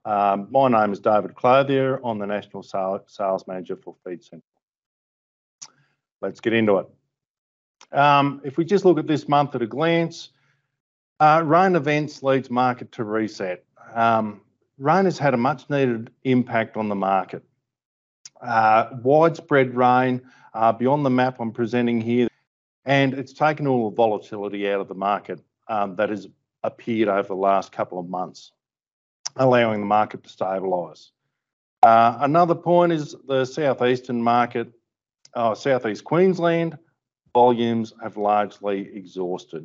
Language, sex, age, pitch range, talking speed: English, male, 50-69, 105-140 Hz, 145 wpm